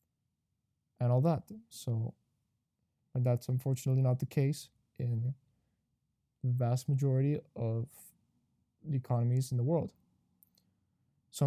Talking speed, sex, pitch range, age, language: 110 wpm, male, 125-145 Hz, 20-39, English